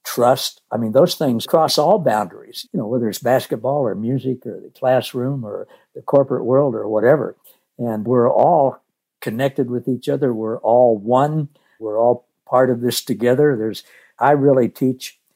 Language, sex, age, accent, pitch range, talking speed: English, male, 60-79, American, 120-145 Hz, 170 wpm